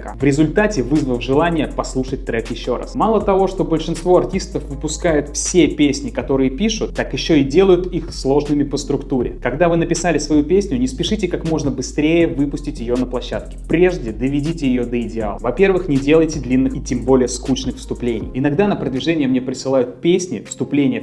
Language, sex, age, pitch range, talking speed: Russian, male, 20-39, 125-165 Hz, 175 wpm